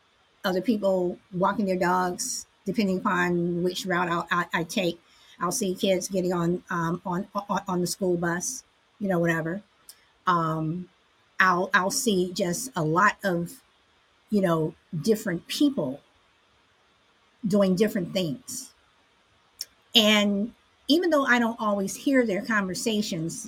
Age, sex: 50-69, female